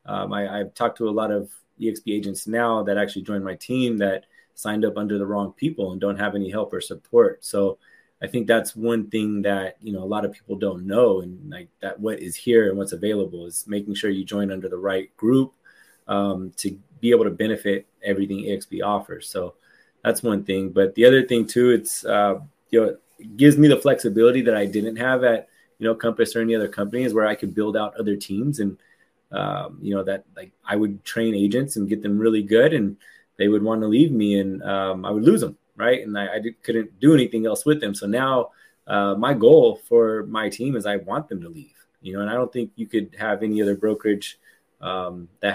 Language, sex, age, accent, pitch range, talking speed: English, male, 20-39, American, 100-115 Hz, 230 wpm